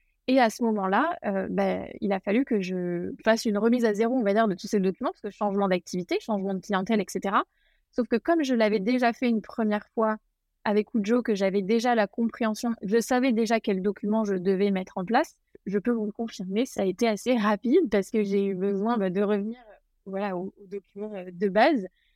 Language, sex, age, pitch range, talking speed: French, female, 20-39, 195-230 Hz, 220 wpm